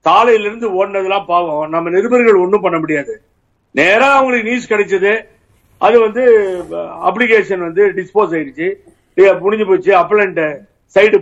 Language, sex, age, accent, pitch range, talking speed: Tamil, male, 50-69, native, 185-245 Hz, 120 wpm